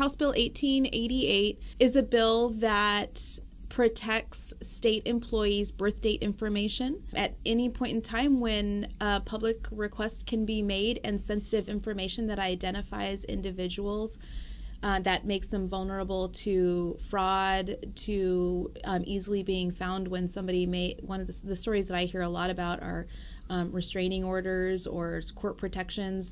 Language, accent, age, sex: English, American, 30-49, female